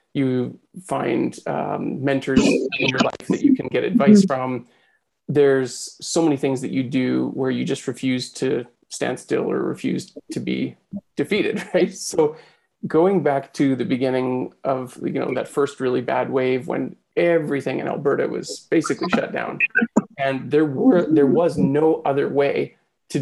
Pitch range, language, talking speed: 135-175 Hz, English, 165 wpm